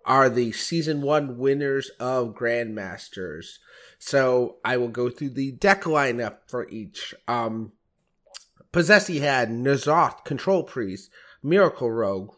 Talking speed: 120 wpm